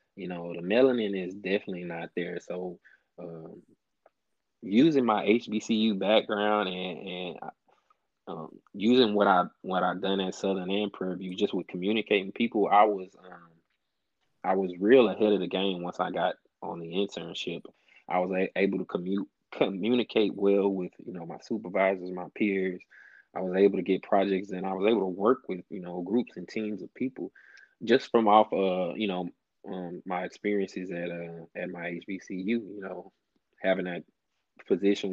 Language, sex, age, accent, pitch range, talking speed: English, male, 20-39, American, 90-100 Hz, 175 wpm